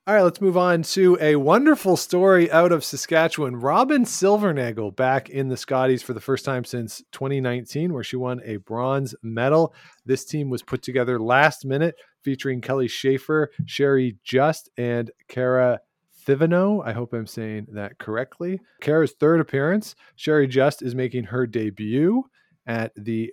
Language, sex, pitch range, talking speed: English, male, 125-170 Hz, 160 wpm